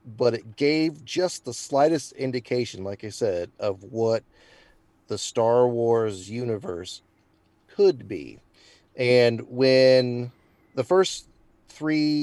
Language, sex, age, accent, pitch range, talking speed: English, male, 30-49, American, 115-135 Hz, 115 wpm